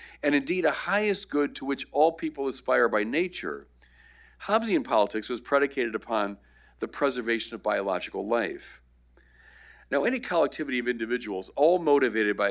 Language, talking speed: English, 145 wpm